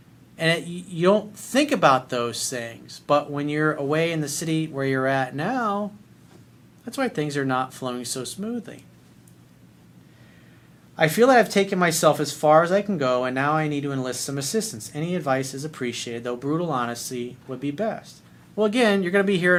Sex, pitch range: male, 130-175 Hz